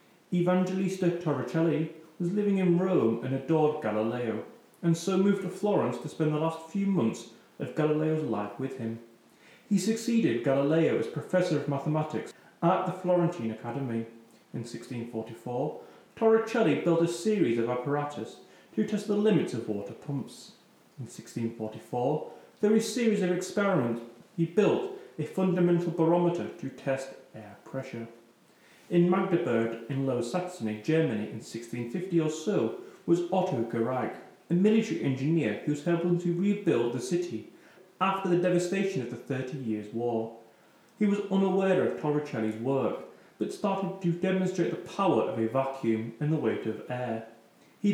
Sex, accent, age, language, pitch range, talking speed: male, British, 30-49, English, 120-185 Hz, 150 wpm